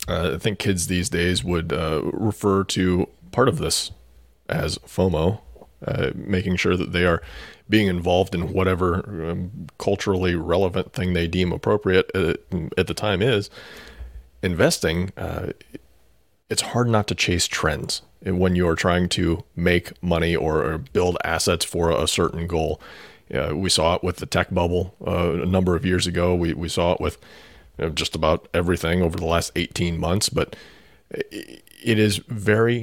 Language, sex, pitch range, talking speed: English, male, 85-105 Hz, 165 wpm